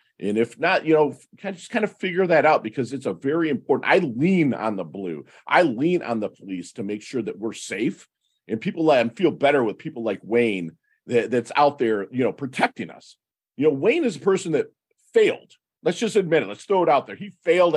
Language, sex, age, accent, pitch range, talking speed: English, male, 40-59, American, 120-190 Hz, 230 wpm